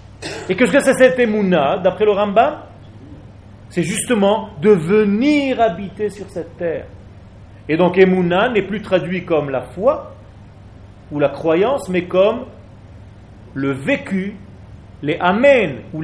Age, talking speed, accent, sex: 40-59, 135 wpm, French, male